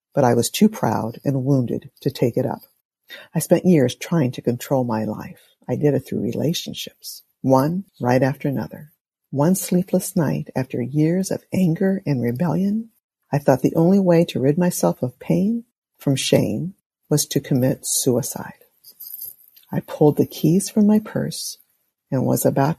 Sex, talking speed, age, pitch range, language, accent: female, 165 wpm, 50-69, 145-190 Hz, English, American